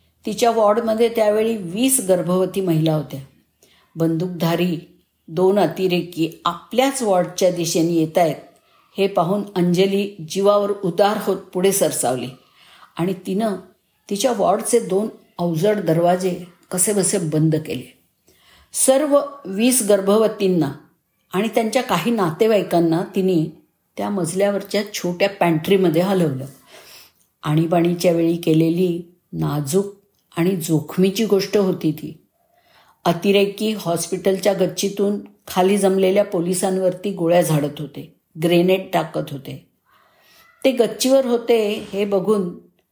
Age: 50-69